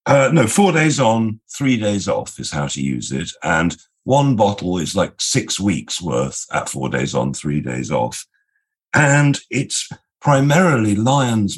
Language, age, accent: English, 50-69, British